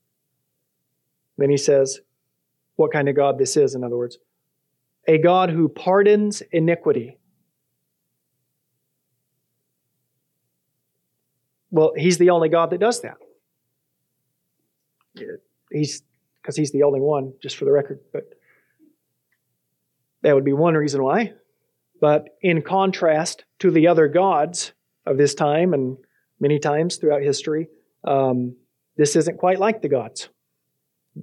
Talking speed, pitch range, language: 125 wpm, 145-200 Hz, English